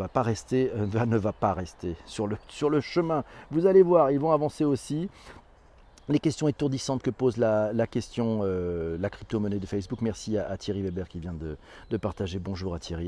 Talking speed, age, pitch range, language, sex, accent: 205 wpm, 40-59, 115-145 Hz, French, male, French